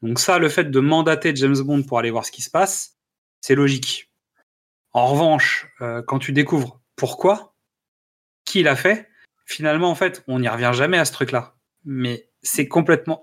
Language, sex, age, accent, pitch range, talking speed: French, male, 30-49, French, 125-165 Hz, 180 wpm